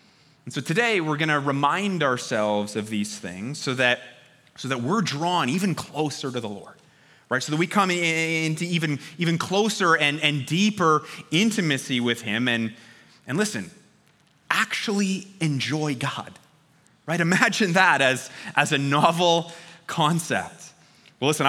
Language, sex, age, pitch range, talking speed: English, male, 30-49, 135-180 Hz, 145 wpm